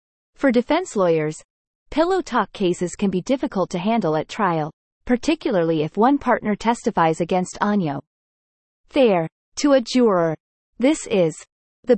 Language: English